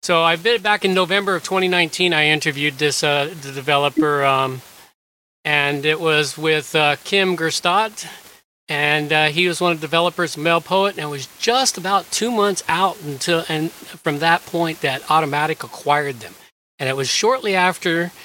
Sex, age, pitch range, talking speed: male, 40-59, 140-175 Hz, 180 wpm